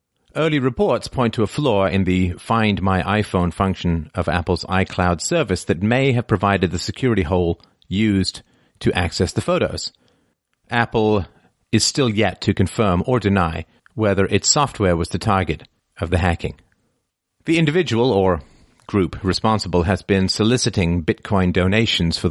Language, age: English, 40-59